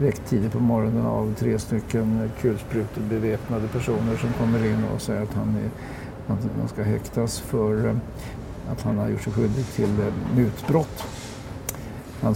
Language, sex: English, male